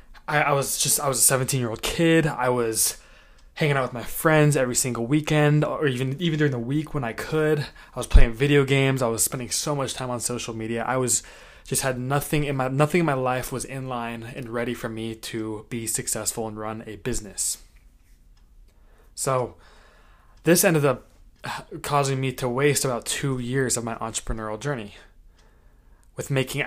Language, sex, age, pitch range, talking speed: English, male, 20-39, 115-135 Hz, 185 wpm